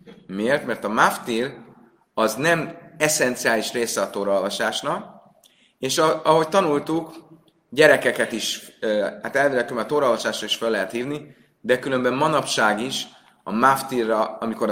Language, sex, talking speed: Hungarian, male, 120 wpm